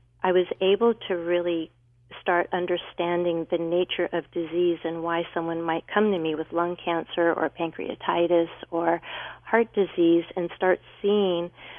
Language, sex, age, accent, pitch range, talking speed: English, female, 40-59, American, 165-180 Hz, 150 wpm